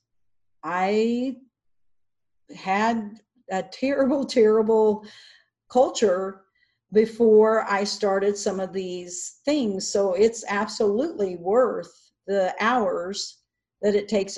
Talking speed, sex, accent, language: 90 wpm, female, American, English